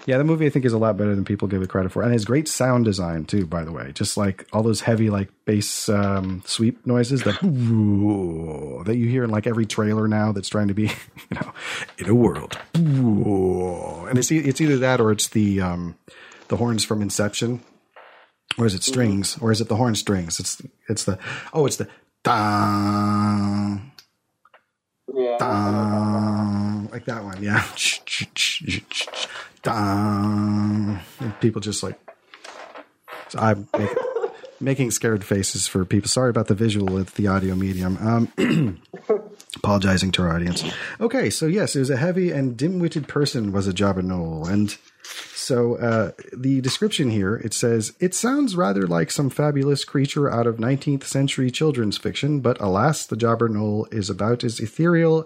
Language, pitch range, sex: English, 100-130 Hz, male